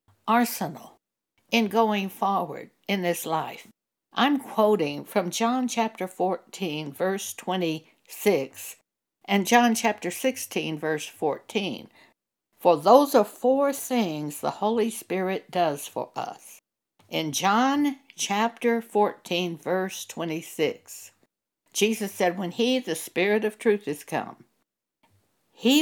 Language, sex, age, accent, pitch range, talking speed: English, female, 60-79, American, 165-240 Hz, 115 wpm